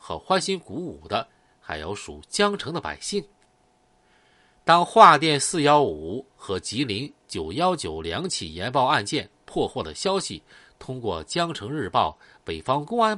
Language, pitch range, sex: Chinese, 130-210 Hz, male